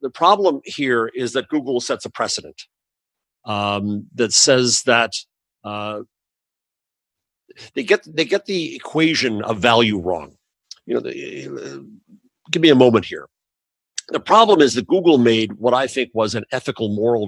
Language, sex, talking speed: English, male, 155 wpm